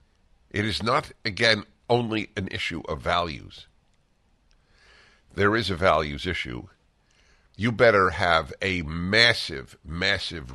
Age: 50-69